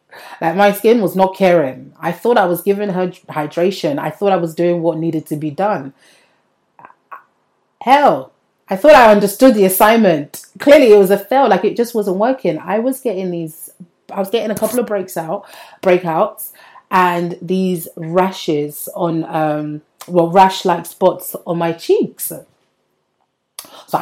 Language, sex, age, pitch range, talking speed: English, female, 30-49, 165-210 Hz, 160 wpm